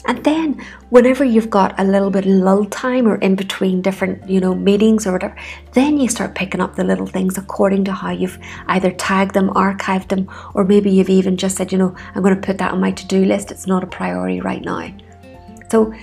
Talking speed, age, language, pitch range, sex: 230 wpm, 30-49, English, 180-200 Hz, female